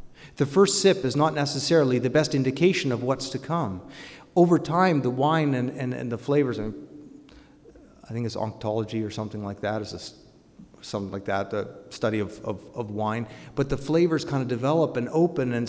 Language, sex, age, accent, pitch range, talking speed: English, male, 30-49, American, 110-145 Hz, 195 wpm